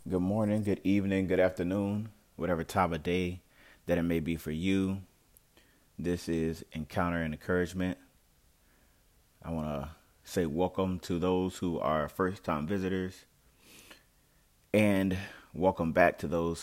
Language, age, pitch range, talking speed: English, 30-49, 80-95 Hz, 135 wpm